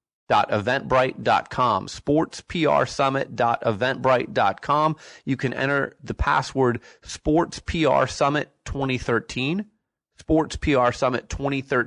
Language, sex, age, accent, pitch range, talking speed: English, male, 30-49, American, 115-140 Hz, 50 wpm